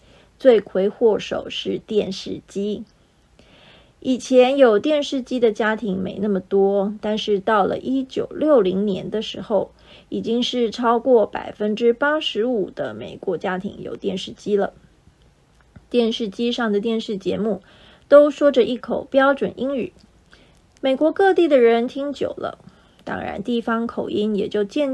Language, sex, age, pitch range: Chinese, female, 20-39, 205-265 Hz